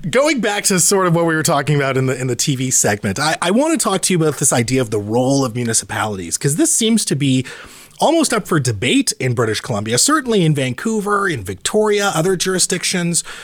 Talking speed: 225 wpm